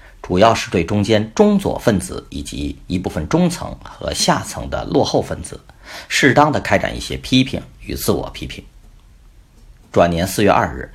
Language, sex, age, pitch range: Chinese, male, 50-69, 95-135 Hz